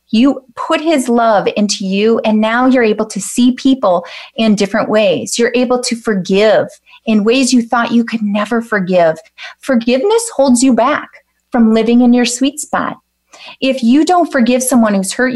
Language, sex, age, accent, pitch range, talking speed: English, female, 30-49, American, 225-275 Hz, 175 wpm